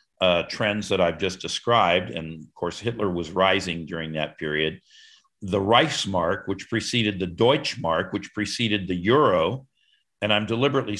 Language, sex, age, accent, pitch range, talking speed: English, male, 50-69, American, 95-115 Hz, 155 wpm